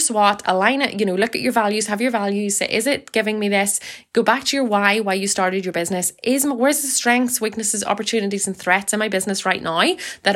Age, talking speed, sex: 20-39, 245 wpm, female